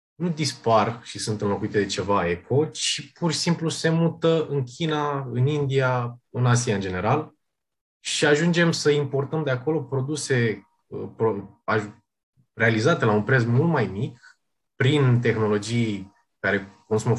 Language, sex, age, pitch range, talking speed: Romanian, male, 20-39, 105-140 Hz, 145 wpm